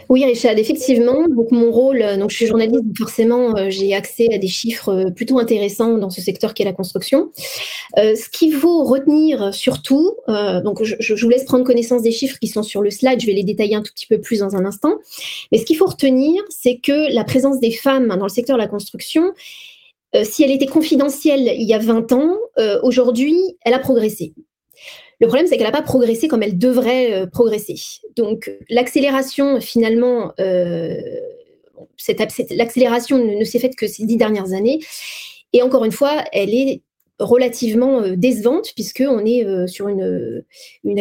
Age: 20-39